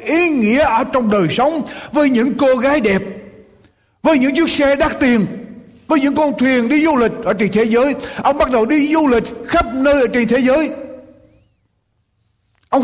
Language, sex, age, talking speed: Vietnamese, male, 60-79, 190 wpm